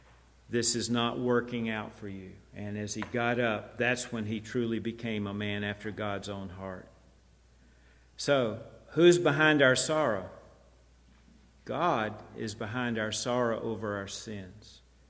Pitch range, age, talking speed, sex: 105-130 Hz, 50-69, 145 wpm, male